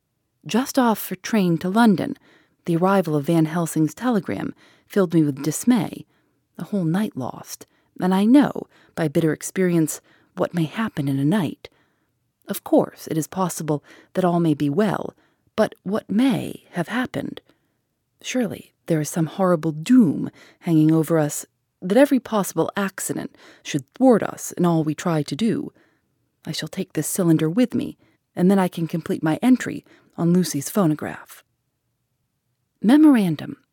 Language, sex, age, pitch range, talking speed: English, female, 30-49, 155-210 Hz, 155 wpm